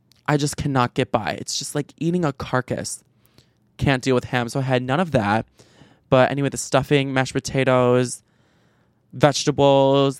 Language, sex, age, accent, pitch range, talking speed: English, male, 20-39, American, 125-145 Hz, 165 wpm